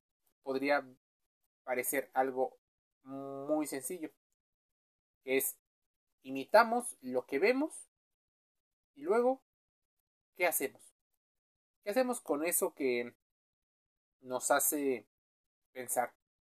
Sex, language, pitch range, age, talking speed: male, Spanish, 130-175 Hz, 30-49, 85 wpm